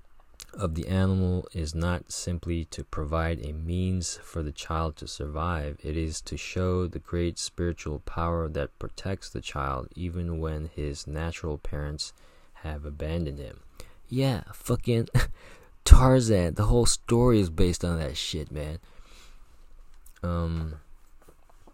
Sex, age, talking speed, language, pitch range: male, 20-39, 135 wpm, English, 80-90 Hz